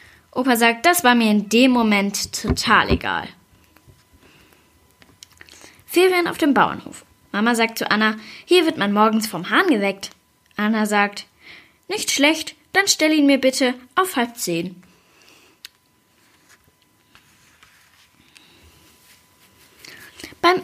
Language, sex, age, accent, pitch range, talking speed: German, female, 10-29, German, 205-275 Hz, 110 wpm